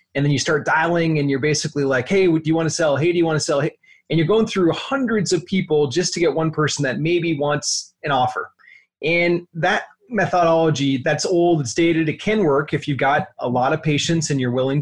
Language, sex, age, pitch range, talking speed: English, male, 30-49, 145-175 Hz, 235 wpm